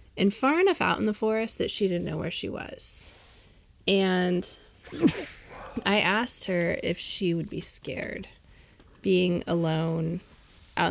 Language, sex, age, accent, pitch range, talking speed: English, female, 20-39, American, 165-205 Hz, 145 wpm